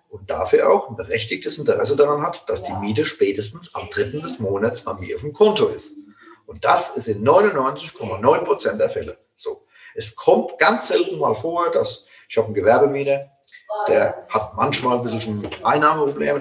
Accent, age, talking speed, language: German, 40-59, 175 wpm, German